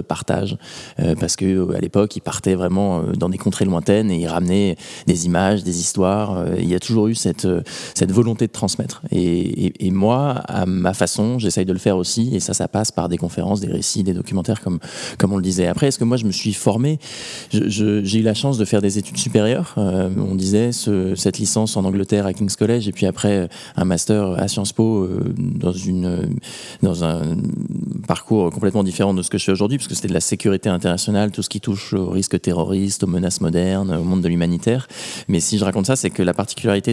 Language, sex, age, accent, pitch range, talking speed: French, male, 20-39, French, 95-110 Hz, 220 wpm